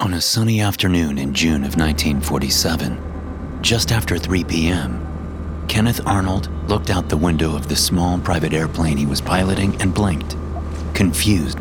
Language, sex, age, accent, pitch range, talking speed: English, male, 30-49, American, 80-100 Hz, 150 wpm